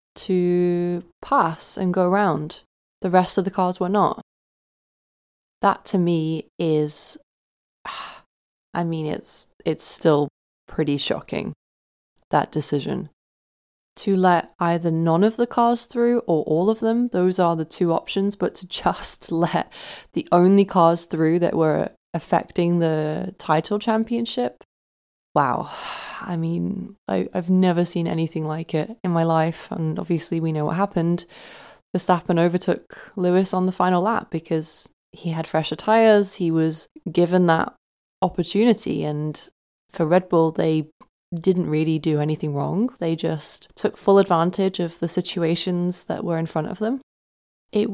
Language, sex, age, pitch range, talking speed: English, female, 20-39, 160-190 Hz, 145 wpm